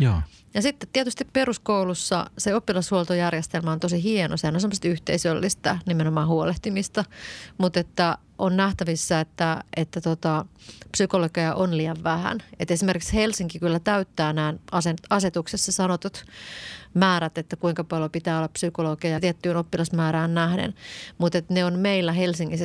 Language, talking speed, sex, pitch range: Finnish, 130 wpm, female, 165-190 Hz